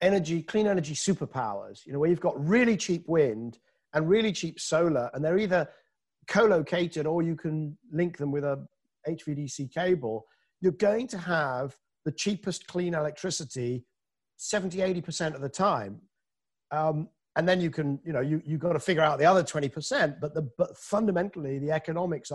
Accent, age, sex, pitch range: British, 50-69, male, 150-195 Hz